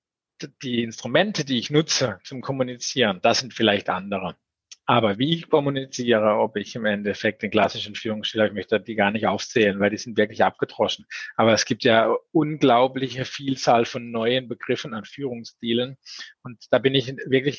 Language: German